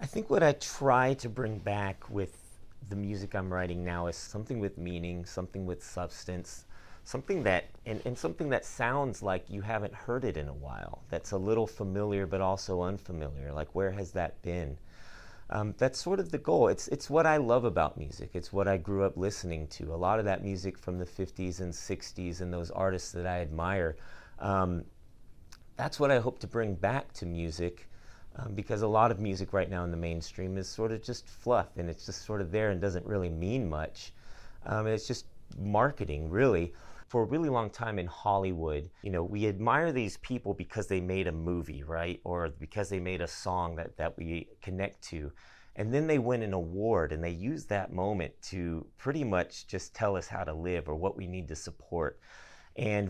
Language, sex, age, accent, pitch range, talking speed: English, male, 30-49, American, 85-110 Hz, 205 wpm